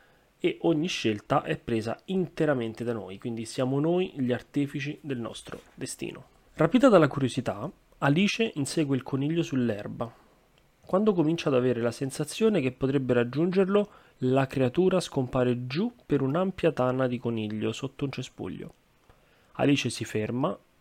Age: 30-49